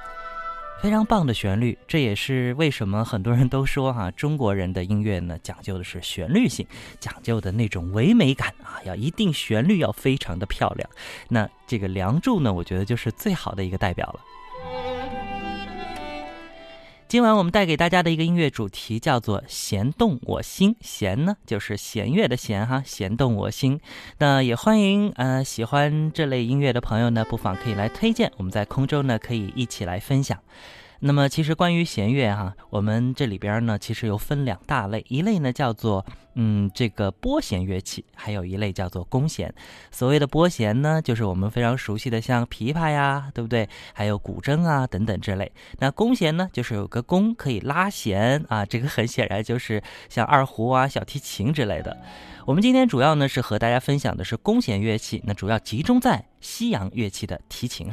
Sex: male